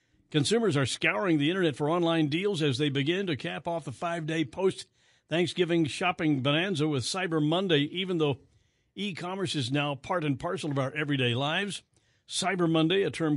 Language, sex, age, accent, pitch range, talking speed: English, male, 60-79, American, 125-160 Hz, 170 wpm